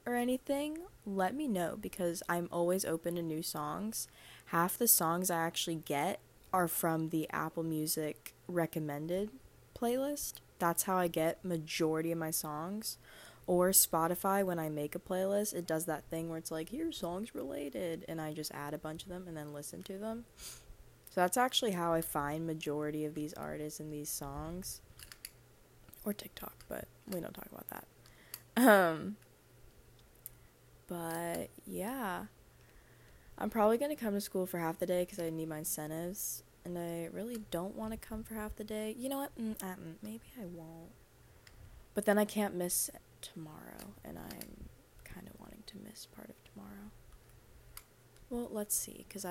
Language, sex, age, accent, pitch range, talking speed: English, female, 20-39, American, 160-200 Hz, 170 wpm